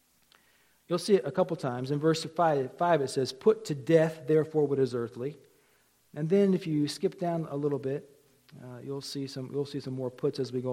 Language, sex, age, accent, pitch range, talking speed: English, male, 50-69, American, 150-220 Hz, 205 wpm